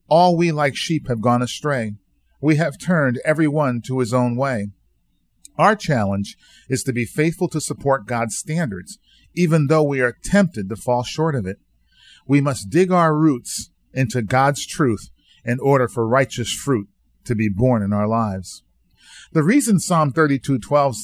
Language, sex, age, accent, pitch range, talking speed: English, male, 40-59, American, 105-145 Hz, 170 wpm